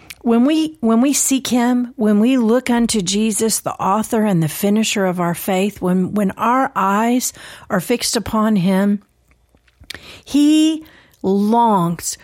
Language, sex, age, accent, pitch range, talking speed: English, female, 50-69, American, 180-235 Hz, 140 wpm